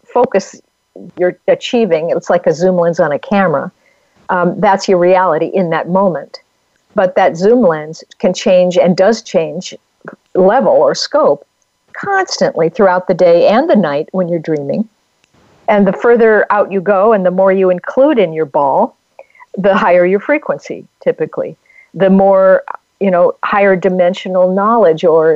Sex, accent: female, American